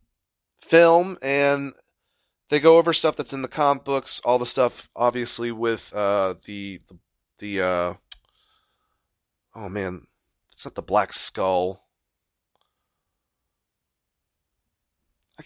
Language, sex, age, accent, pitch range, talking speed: English, male, 30-49, American, 100-140 Hz, 115 wpm